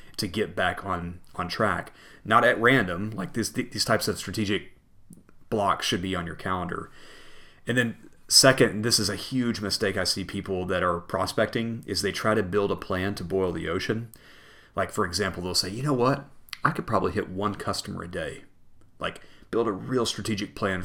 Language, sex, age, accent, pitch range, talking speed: English, male, 30-49, American, 90-105 Hz, 200 wpm